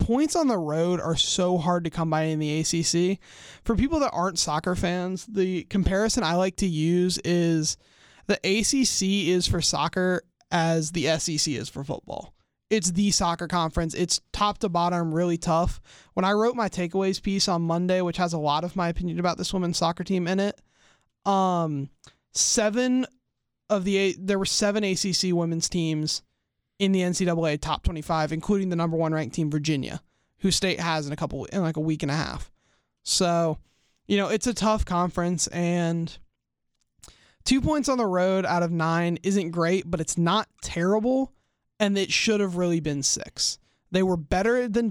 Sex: male